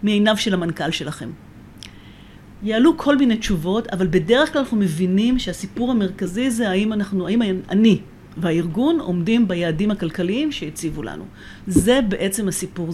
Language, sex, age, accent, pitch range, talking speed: Hebrew, female, 40-59, native, 180-245 Hz, 135 wpm